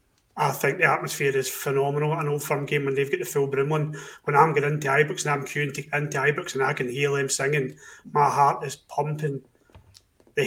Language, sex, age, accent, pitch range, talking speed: English, male, 30-49, British, 135-155 Hz, 230 wpm